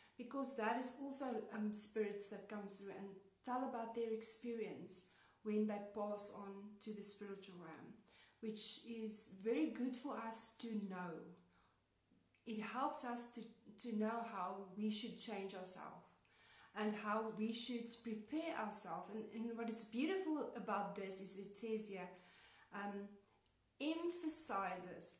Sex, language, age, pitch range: female, English, 40-59, 200-240 Hz